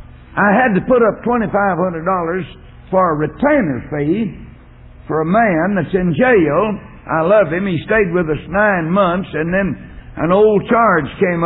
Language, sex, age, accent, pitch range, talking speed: English, male, 60-79, American, 145-205 Hz, 160 wpm